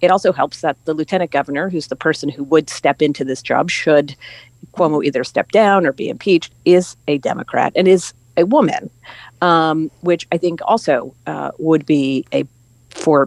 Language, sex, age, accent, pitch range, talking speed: English, female, 40-59, American, 140-175 Hz, 185 wpm